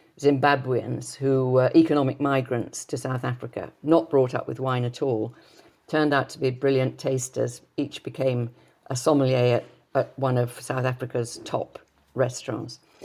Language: English